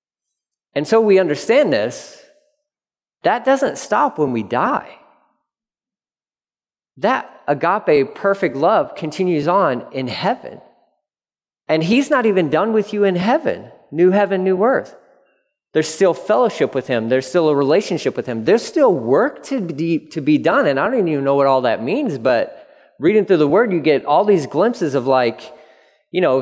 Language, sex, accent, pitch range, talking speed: English, male, American, 145-220 Hz, 170 wpm